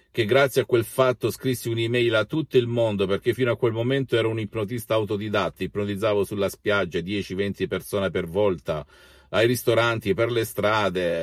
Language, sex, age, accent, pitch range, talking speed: Italian, male, 50-69, native, 95-120 Hz, 170 wpm